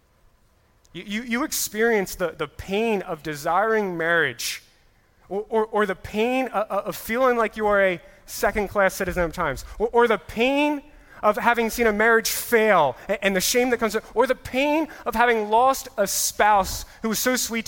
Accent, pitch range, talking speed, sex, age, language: American, 175-230 Hz, 180 wpm, male, 30-49, English